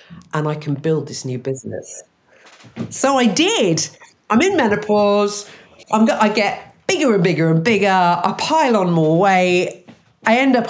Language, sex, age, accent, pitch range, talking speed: English, female, 40-59, British, 150-215 Hz, 170 wpm